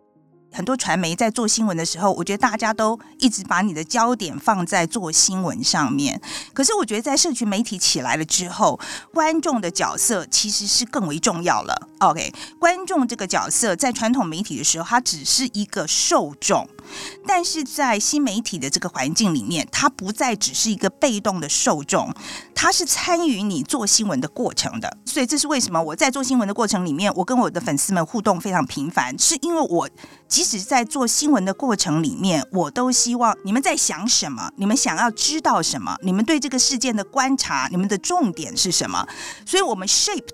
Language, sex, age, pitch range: Chinese, female, 50-69, 200-275 Hz